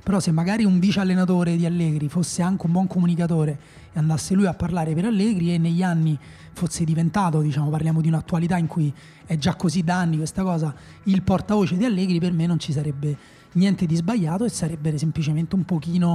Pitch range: 160-190 Hz